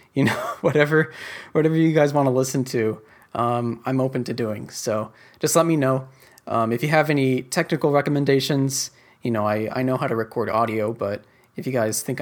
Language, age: English, 20-39